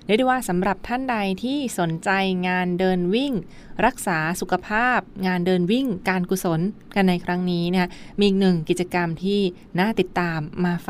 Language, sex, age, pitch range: Thai, female, 20-39, 170-195 Hz